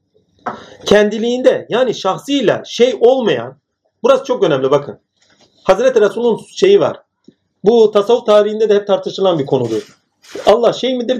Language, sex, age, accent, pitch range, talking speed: Turkish, male, 40-59, native, 180-240 Hz, 130 wpm